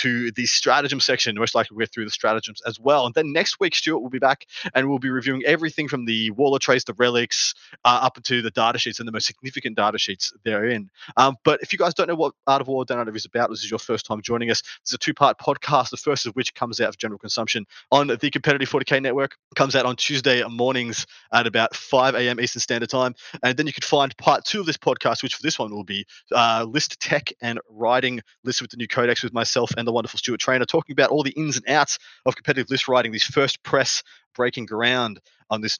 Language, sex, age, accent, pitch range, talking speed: English, male, 20-39, Australian, 115-135 Hz, 255 wpm